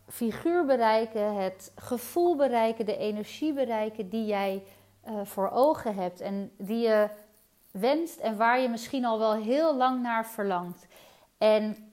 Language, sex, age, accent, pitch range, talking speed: Dutch, female, 30-49, Dutch, 215-270 Hz, 140 wpm